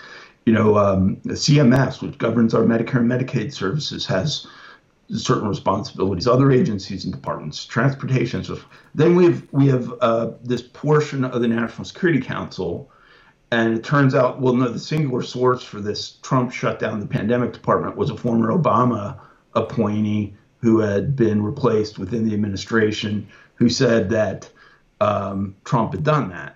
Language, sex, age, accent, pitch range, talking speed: English, male, 50-69, American, 105-125 Hz, 160 wpm